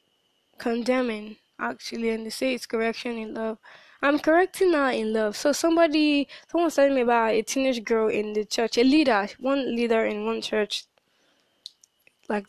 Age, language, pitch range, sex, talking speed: 10-29, English, 220-265 Hz, female, 165 wpm